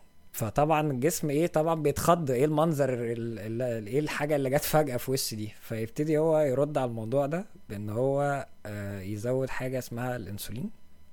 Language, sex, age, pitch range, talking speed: Arabic, male, 20-39, 100-140 Hz, 145 wpm